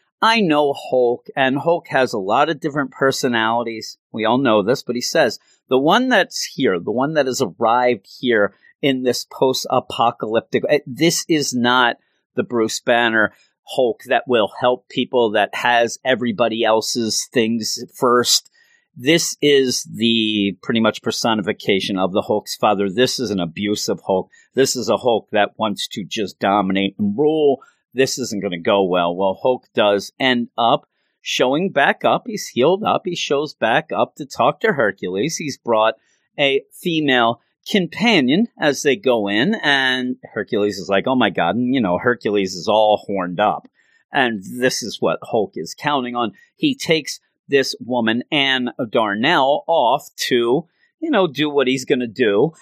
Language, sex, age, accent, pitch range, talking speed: English, male, 40-59, American, 115-150 Hz, 170 wpm